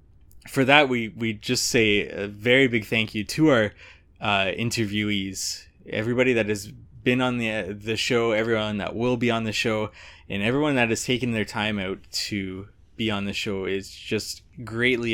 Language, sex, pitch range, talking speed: English, male, 100-125 Hz, 180 wpm